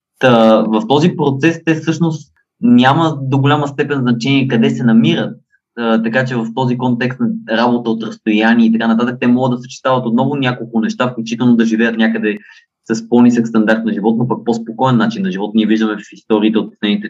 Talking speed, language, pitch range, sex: 185 wpm, Bulgarian, 110-140 Hz, male